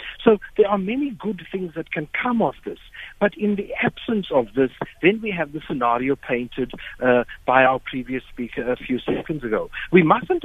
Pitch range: 140-205 Hz